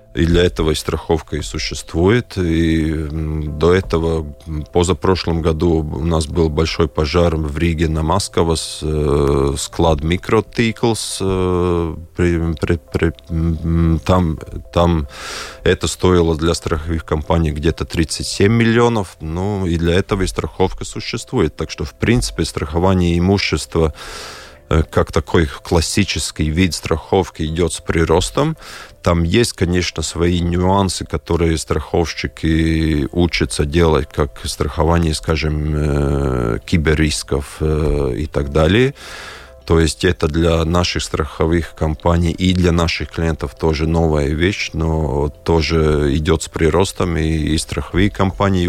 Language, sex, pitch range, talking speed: Russian, male, 80-90 Hz, 115 wpm